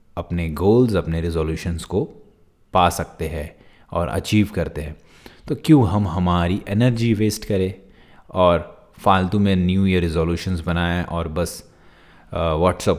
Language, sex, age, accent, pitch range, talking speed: Hindi, male, 30-49, native, 85-100 Hz, 135 wpm